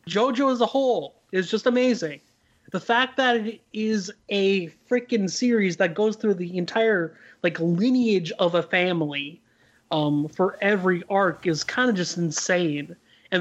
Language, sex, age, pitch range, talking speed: English, male, 30-49, 160-210 Hz, 155 wpm